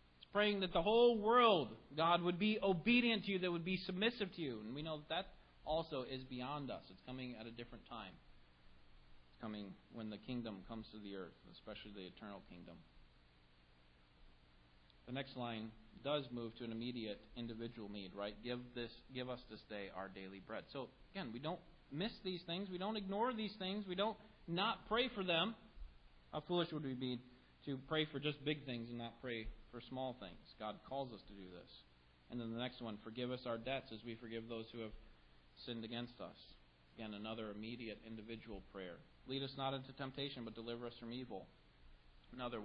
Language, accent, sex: English, American, male